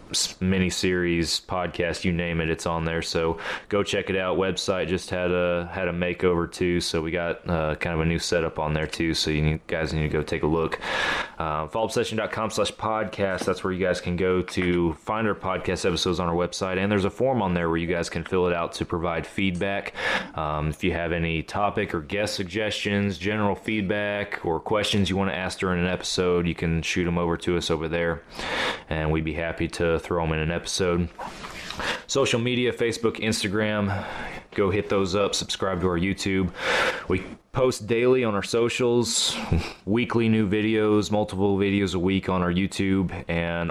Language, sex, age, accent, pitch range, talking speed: English, male, 20-39, American, 85-100 Hz, 200 wpm